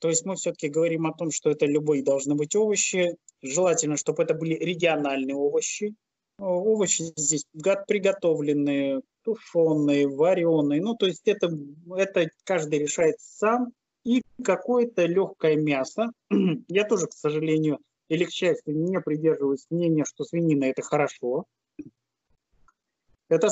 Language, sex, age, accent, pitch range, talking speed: Russian, male, 20-39, native, 150-185 Hz, 130 wpm